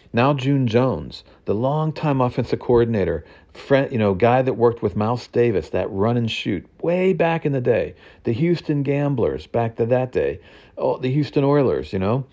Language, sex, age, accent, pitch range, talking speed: English, male, 50-69, American, 100-130 Hz, 185 wpm